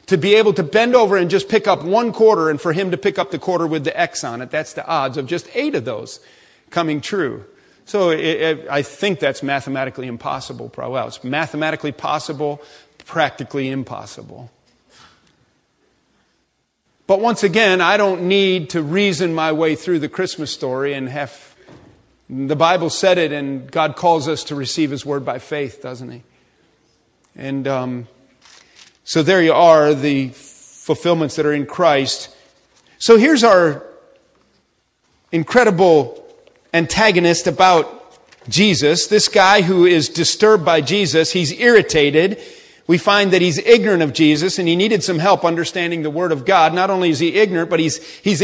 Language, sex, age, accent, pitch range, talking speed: English, male, 40-59, American, 150-205 Hz, 165 wpm